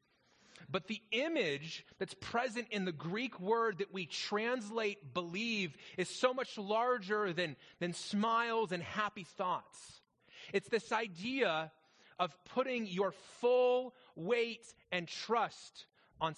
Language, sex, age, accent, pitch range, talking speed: English, male, 30-49, American, 175-225 Hz, 125 wpm